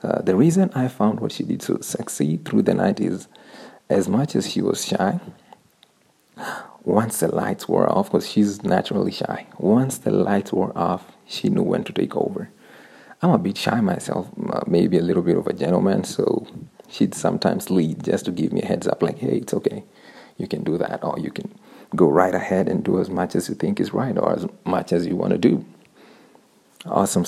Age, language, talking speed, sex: 40-59, English, 210 wpm, male